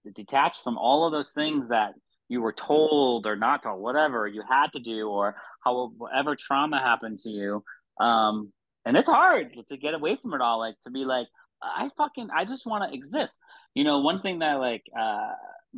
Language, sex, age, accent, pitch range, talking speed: English, male, 30-49, American, 100-135 Hz, 200 wpm